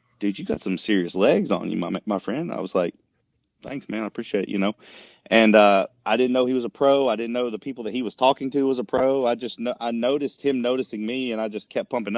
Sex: male